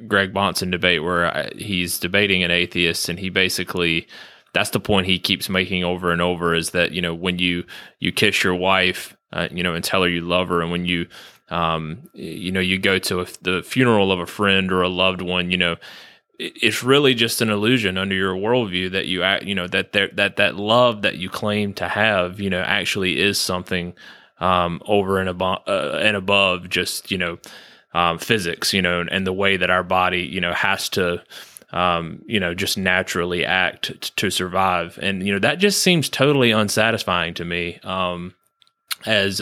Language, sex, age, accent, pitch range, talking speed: English, male, 20-39, American, 90-100 Hz, 205 wpm